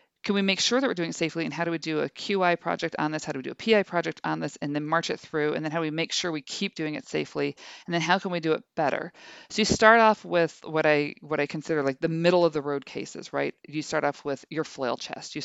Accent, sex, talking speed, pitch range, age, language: American, female, 305 wpm, 145-185 Hz, 40-59, English